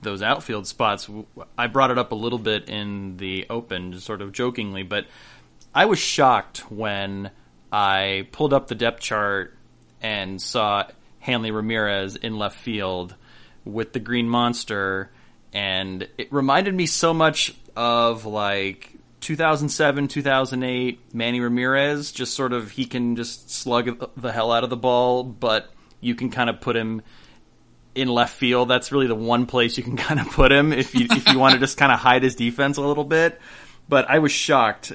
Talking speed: 175 wpm